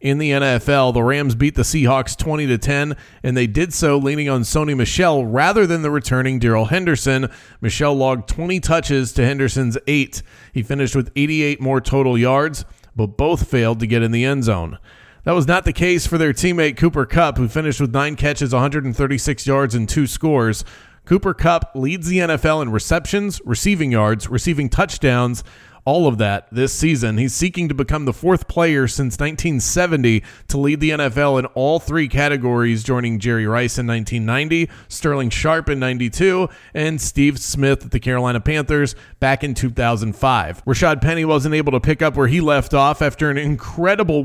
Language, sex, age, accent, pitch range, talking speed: English, male, 30-49, American, 125-155 Hz, 180 wpm